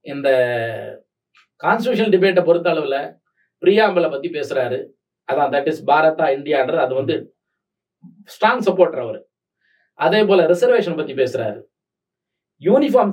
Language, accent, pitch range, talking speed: Tamil, native, 170-205 Hz, 105 wpm